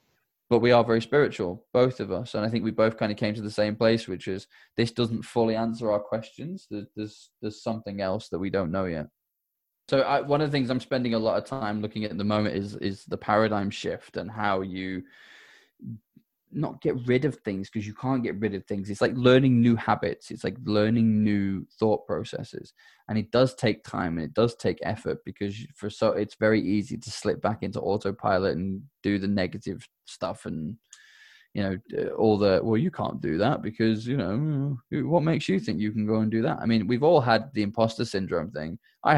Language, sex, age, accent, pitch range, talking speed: English, male, 10-29, British, 105-120 Hz, 220 wpm